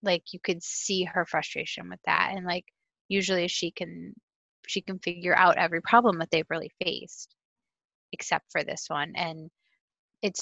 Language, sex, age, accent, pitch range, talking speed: English, female, 20-39, American, 160-195 Hz, 165 wpm